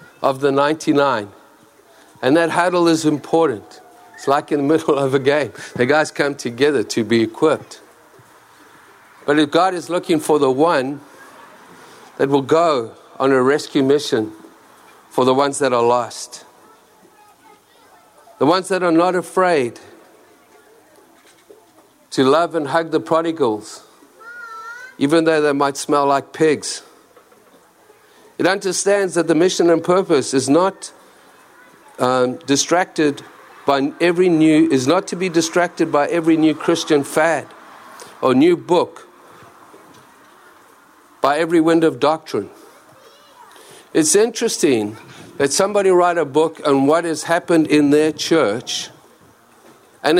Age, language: 50-69, English